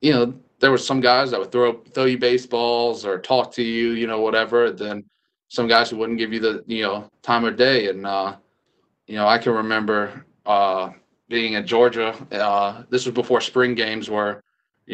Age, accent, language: 20-39, American, English